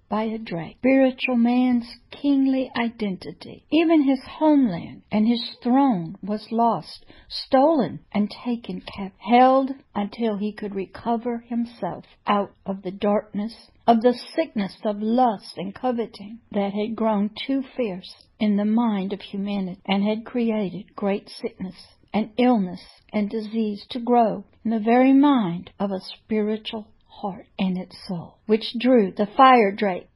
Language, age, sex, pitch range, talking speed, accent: English, 60-79, female, 205-245 Hz, 145 wpm, American